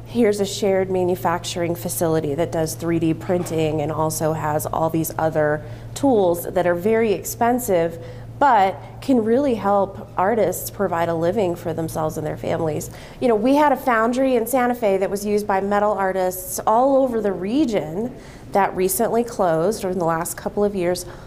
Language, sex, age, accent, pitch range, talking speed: English, female, 30-49, American, 170-225 Hz, 170 wpm